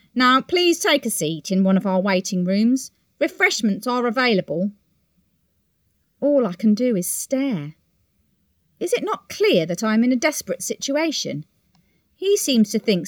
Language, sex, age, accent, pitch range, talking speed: English, female, 40-59, British, 185-300 Hz, 160 wpm